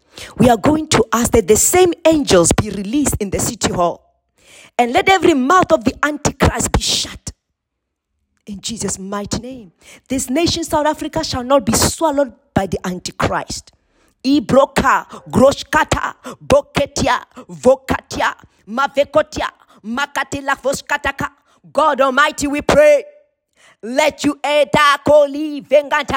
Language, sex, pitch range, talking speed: English, female, 270-330 Hz, 125 wpm